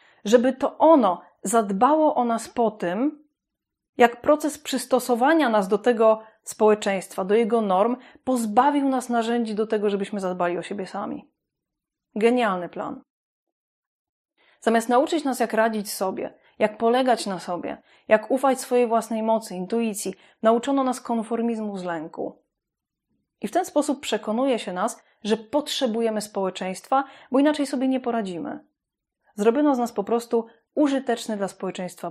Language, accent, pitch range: Polish, native, 205-260 Hz